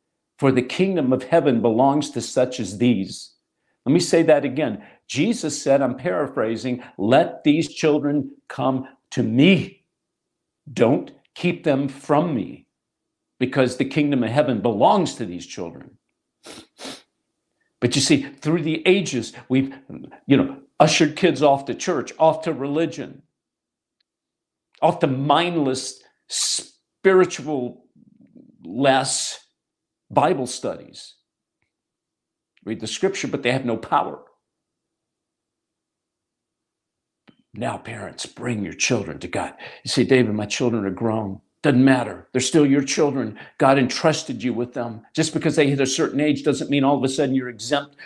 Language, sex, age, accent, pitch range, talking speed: English, male, 50-69, American, 125-155 Hz, 135 wpm